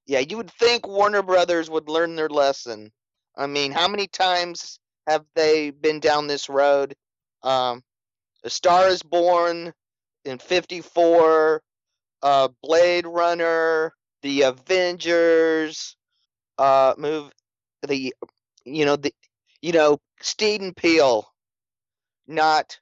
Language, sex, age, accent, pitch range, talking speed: English, male, 30-49, American, 135-170 Hz, 120 wpm